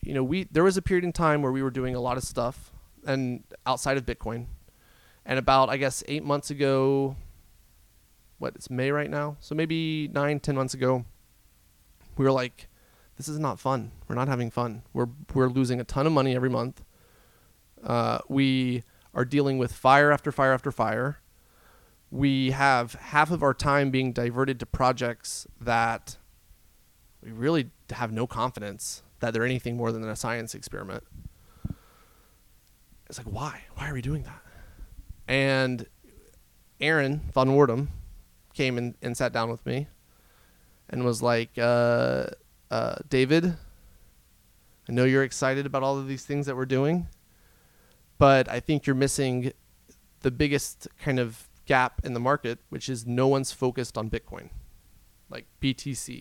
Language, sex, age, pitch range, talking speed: English, male, 30-49, 120-140 Hz, 160 wpm